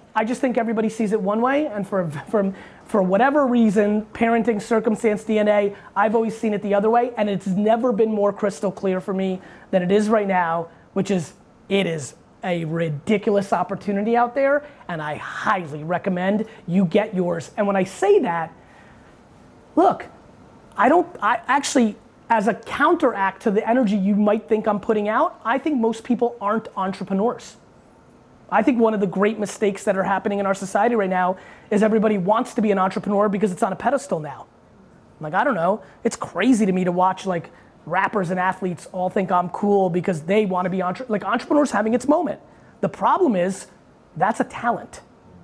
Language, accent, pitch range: English, American, 195-230 Hz